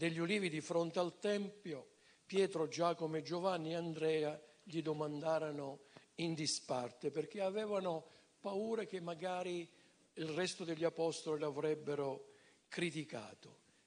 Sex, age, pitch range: male, 60-79, 155-200 Hz